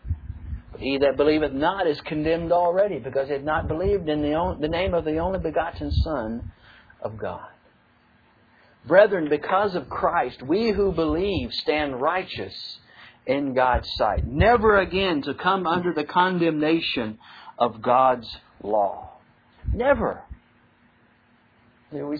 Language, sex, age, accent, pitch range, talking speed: English, male, 60-79, American, 145-215 Hz, 125 wpm